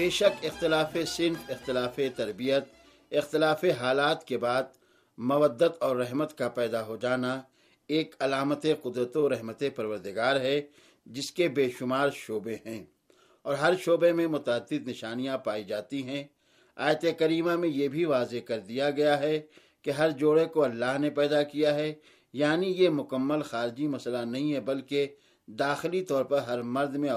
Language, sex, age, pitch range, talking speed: Urdu, male, 60-79, 130-155 Hz, 160 wpm